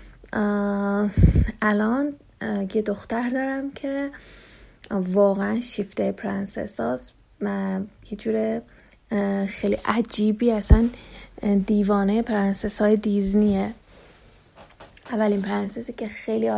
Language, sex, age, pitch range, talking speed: Persian, female, 30-49, 195-220 Hz, 85 wpm